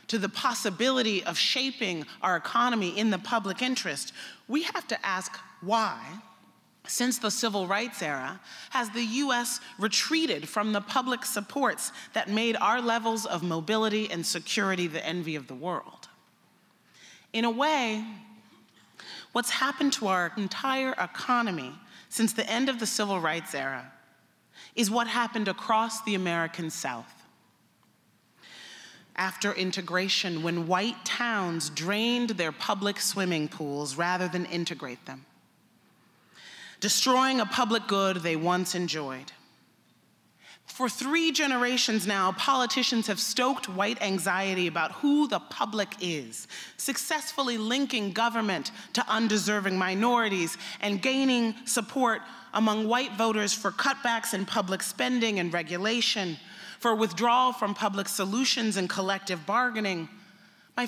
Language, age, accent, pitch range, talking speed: English, 30-49, American, 190-240 Hz, 125 wpm